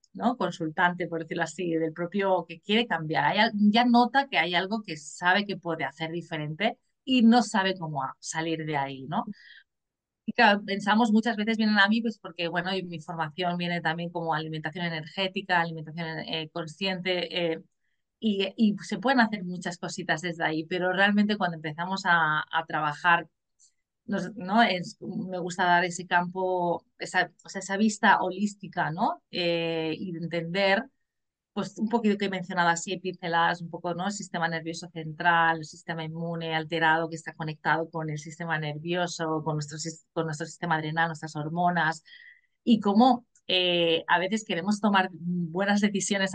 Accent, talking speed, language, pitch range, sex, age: Spanish, 165 wpm, Spanish, 165-200 Hz, female, 30-49